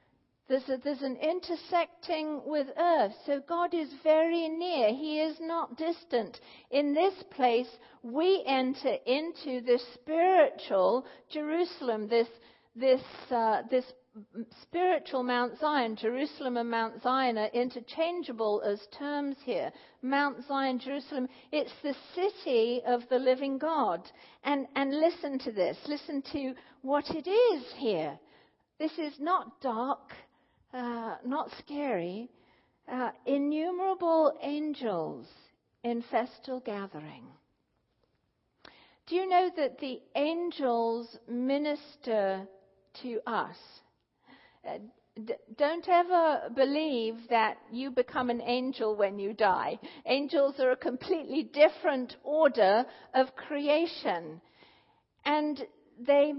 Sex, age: female, 50-69